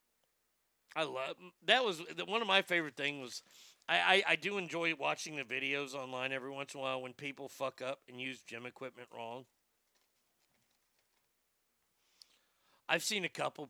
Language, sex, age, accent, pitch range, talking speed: English, male, 40-59, American, 115-160 Hz, 160 wpm